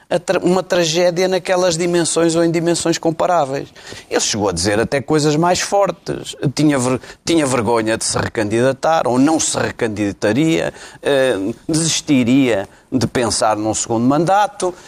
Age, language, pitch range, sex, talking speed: 40-59, Portuguese, 115-155 Hz, male, 125 wpm